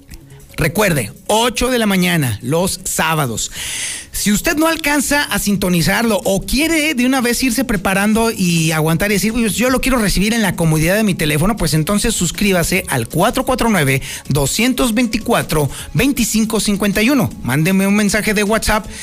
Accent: Mexican